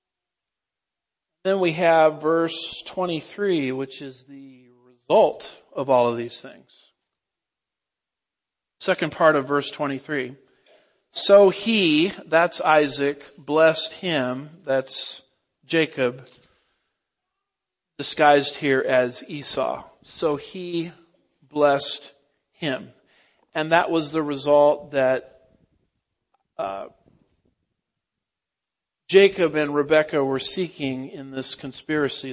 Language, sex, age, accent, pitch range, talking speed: English, male, 50-69, American, 135-165 Hz, 90 wpm